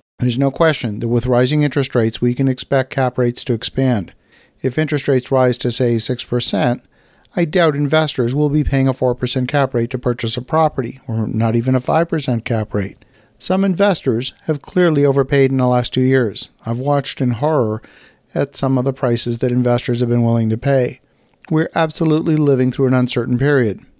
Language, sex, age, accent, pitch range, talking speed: English, male, 50-69, American, 125-145 Hz, 190 wpm